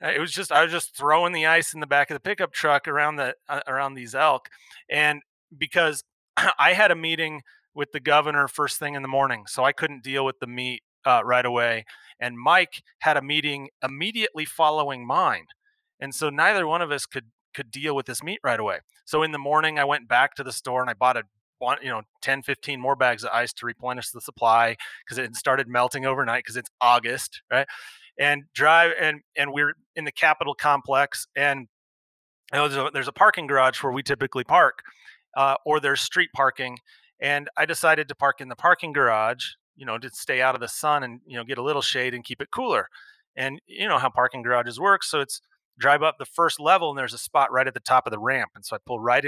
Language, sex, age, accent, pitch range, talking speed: English, male, 30-49, American, 125-155 Hz, 230 wpm